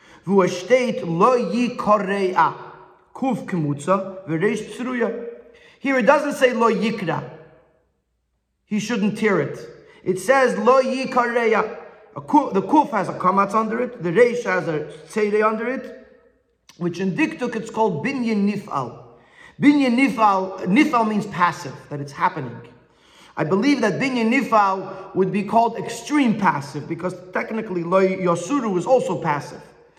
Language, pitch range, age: English, 190-255 Hz, 30-49